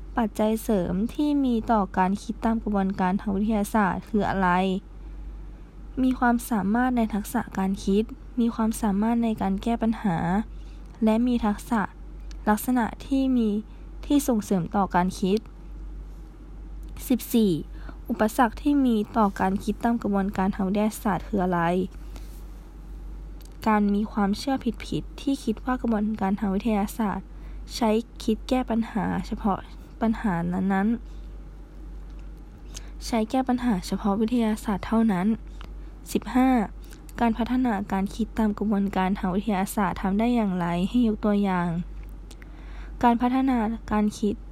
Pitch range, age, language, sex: 195-230 Hz, 20-39, Thai, female